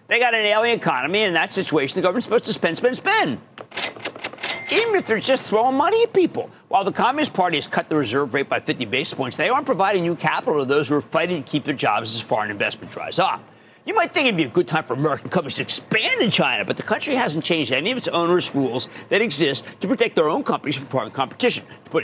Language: English